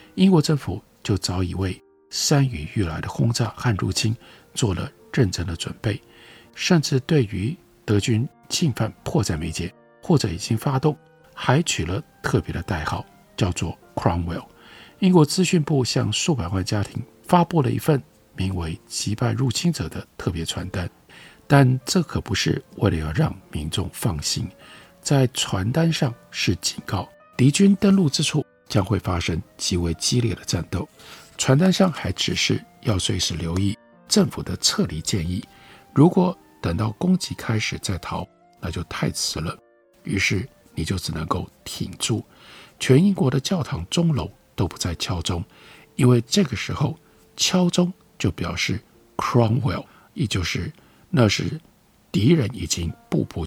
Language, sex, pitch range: Chinese, male, 95-155 Hz